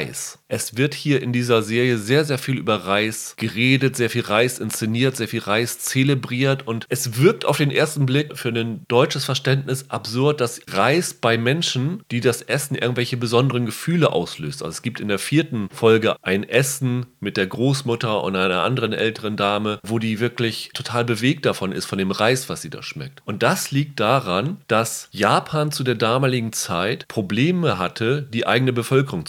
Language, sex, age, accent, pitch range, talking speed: German, male, 30-49, German, 110-135 Hz, 180 wpm